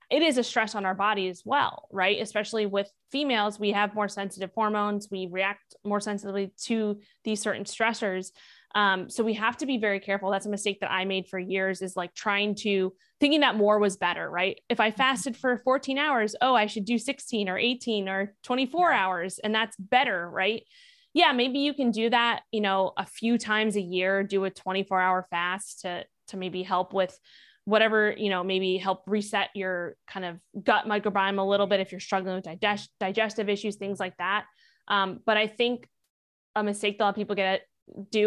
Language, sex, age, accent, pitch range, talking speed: English, female, 20-39, American, 190-225 Hz, 205 wpm